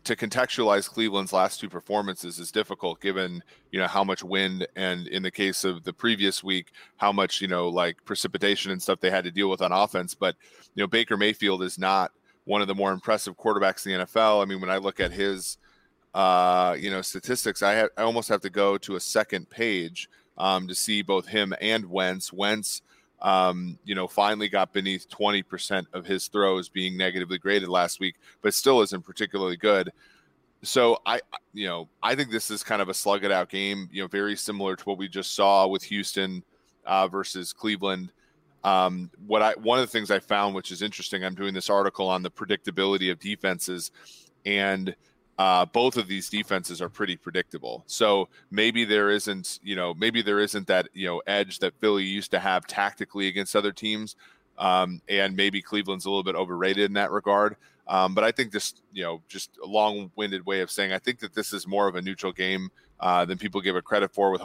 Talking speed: 210 wpm